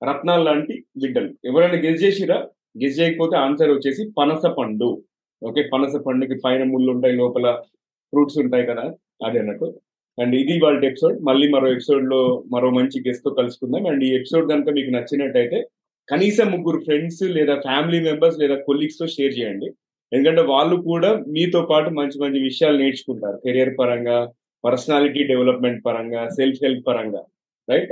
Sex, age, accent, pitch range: male, 30-49, native, 130-165 Hz